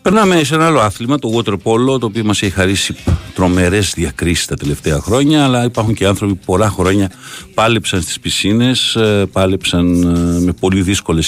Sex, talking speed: male, 170 wpm